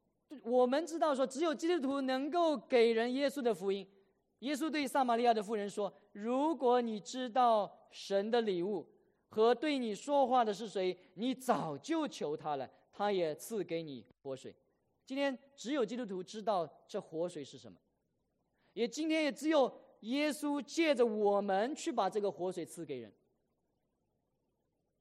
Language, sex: English, male